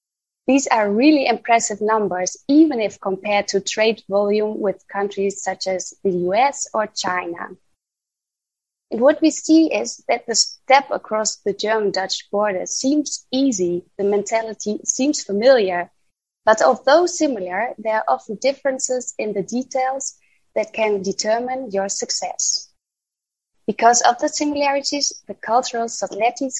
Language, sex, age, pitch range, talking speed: German, female, 20-39, 195-255 Hz, 135 wpm